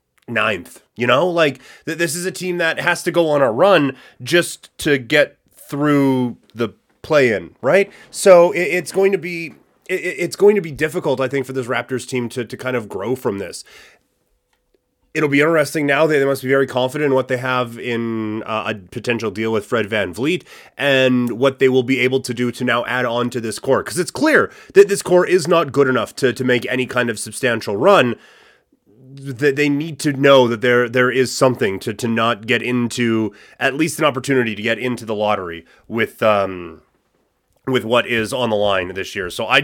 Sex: male